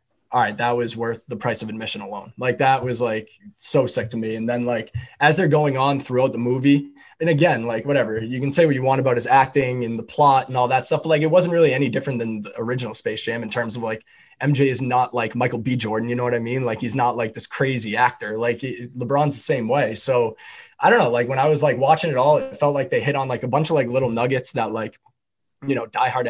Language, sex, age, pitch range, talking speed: English, male, 20-39, 120-140 Hz, 265 wpm